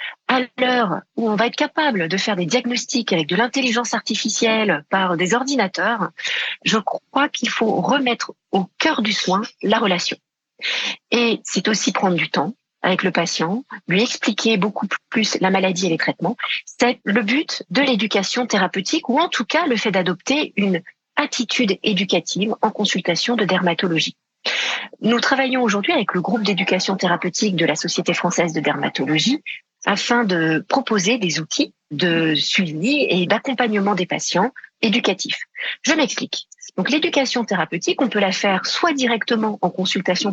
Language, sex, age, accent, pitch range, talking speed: French, female, 40-59, French, 185-245 Hz, 160 wpm